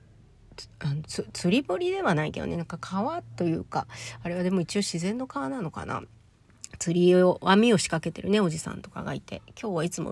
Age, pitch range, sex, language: 40-59, 150-185 Hz, female, Japanese